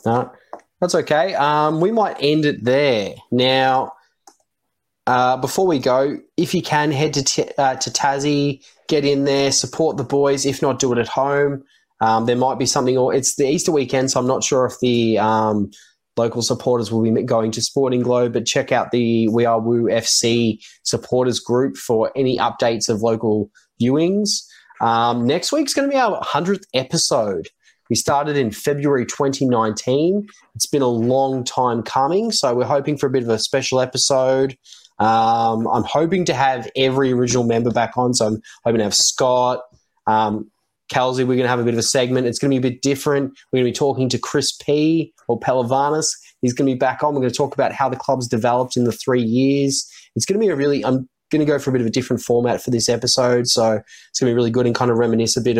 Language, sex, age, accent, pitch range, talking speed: English, male, 20-39, Australian, 120-140 Hz, 215 wpm